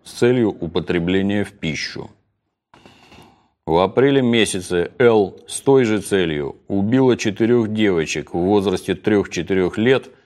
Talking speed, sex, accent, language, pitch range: 115 wpm, male, native, Russian, 85-110 Hz